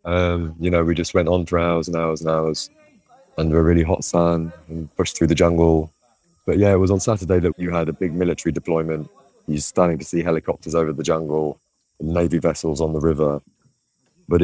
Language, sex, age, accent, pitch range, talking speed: English, male, 20-39, British, 80-90 Hz, 210 wpm